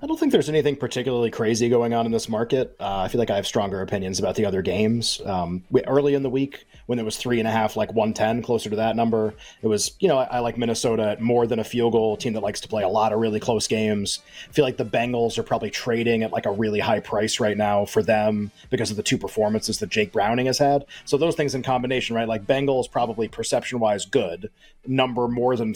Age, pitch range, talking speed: 30-49, 110-135 Hz, 255 wpm